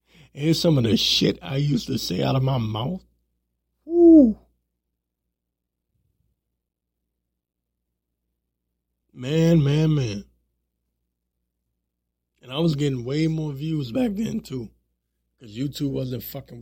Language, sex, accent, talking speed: English, male, American, 110 wpm